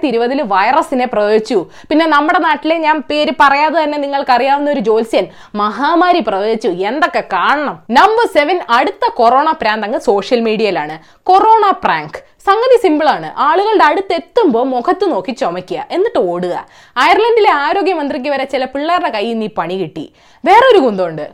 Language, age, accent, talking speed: Malayalam, 20-39, native, 85 wpm